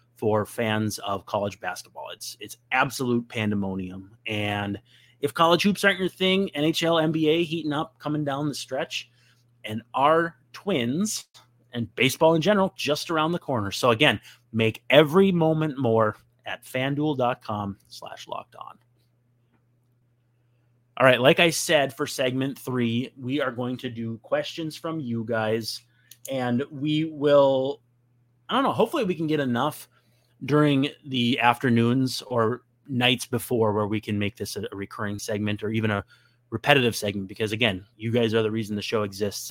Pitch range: 110-145 Hz